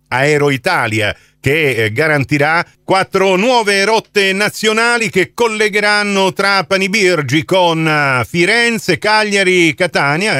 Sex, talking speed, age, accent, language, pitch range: male, 90 wpm, 40-59, native, Italian, 140-190 Hz